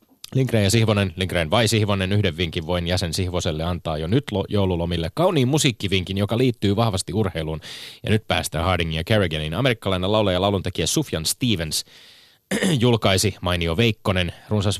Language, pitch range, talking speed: Finnish, 85-110 Hz, 150 wpm